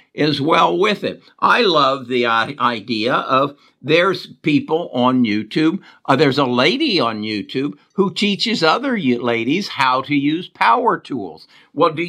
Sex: male